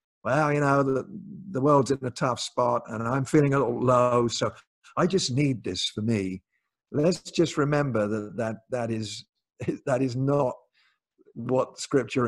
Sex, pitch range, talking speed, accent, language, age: male, 110-140 Hz, 170 wpm, British, English, 50-69